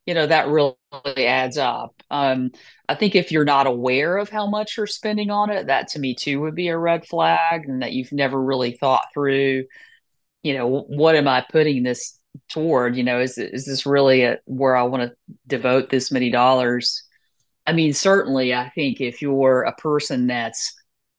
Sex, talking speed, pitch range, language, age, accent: female, 195 wpm, 125-155 Hz, English, 40-59, American